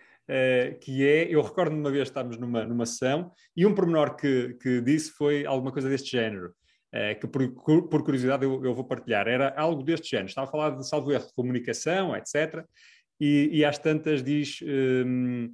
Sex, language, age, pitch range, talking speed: male, Portuguese, 30-49, 130-160 Hz, 200 wpm